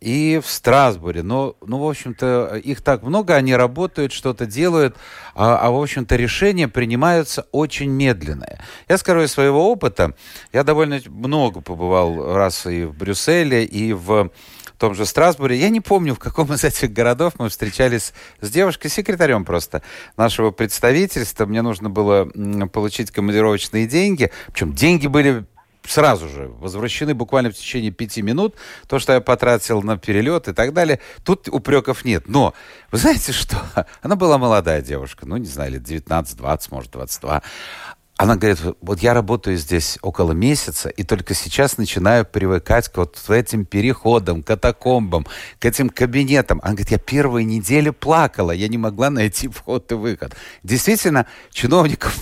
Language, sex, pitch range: Russian, male, 105-140 Hz